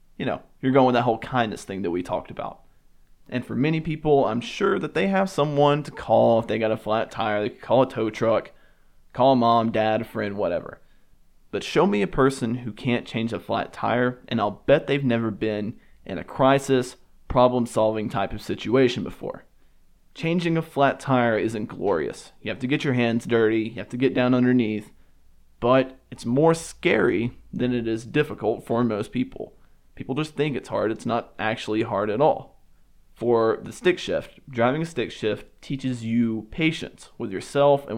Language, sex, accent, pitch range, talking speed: English, male, American, 110-135 Hz, 195 wpm